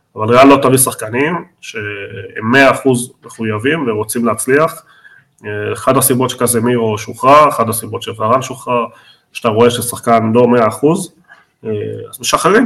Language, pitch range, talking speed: Hebrew, 110-135 Hz, 120 wpm